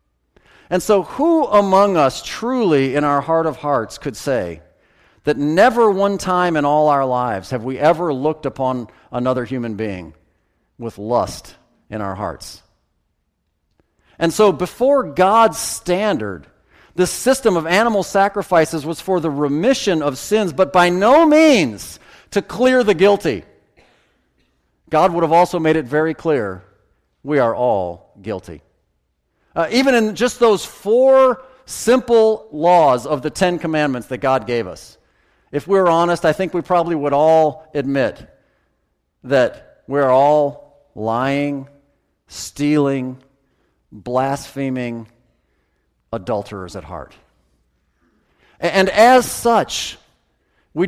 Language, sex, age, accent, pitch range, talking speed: English, male, 40-59, American, 120-195 Hz, 130 wpm